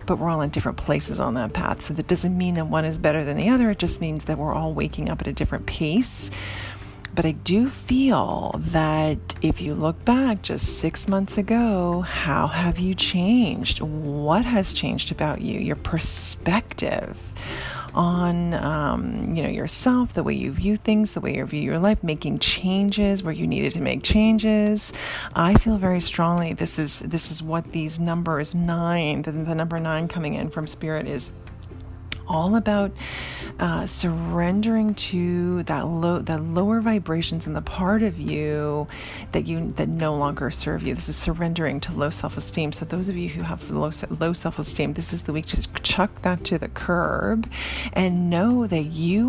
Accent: American